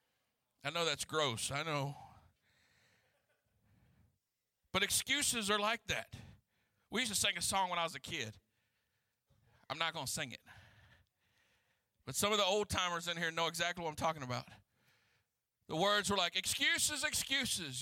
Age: 50-69